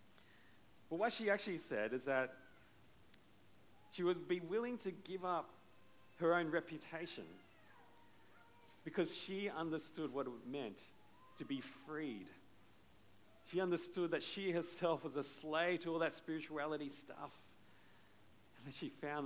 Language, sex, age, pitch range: English, male, 40-59, 115-155 Hz